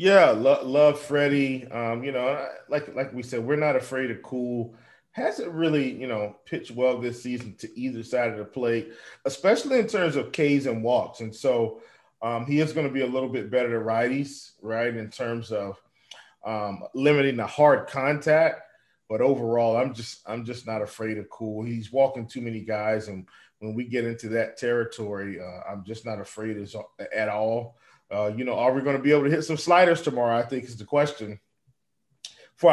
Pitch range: 115-140 Hz